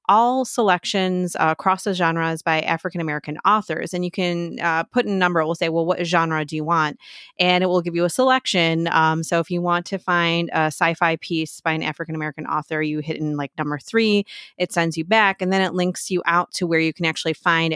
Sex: female